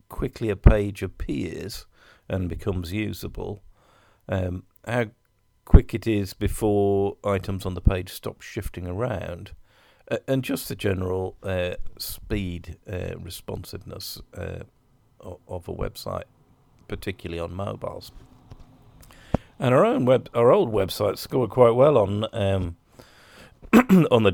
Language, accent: English, British